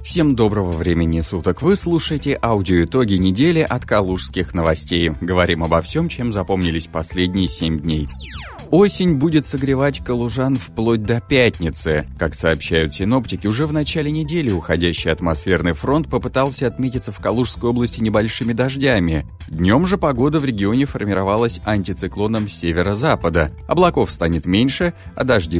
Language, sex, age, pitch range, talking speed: Russian, male, 30-49, 85-130 Hz, 135 wpm